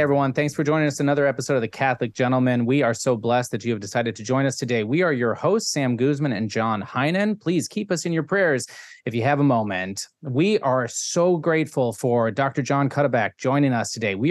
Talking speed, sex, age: 230 wpm, male, 30-49